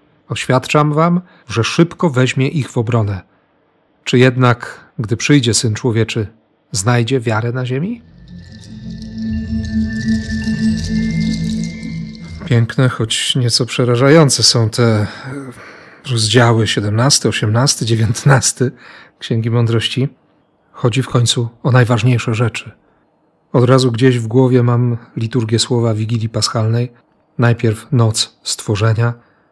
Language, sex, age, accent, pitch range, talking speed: Polish, male, 40-59, native, 110-130 Hz, 100 wpm